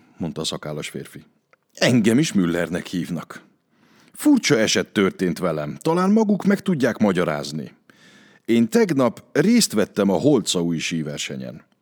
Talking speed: 120 wpm